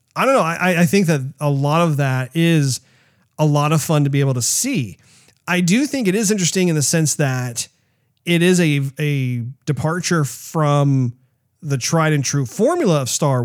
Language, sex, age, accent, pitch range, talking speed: English, male, 40-59, American, 135-160 Hz, 195 wpm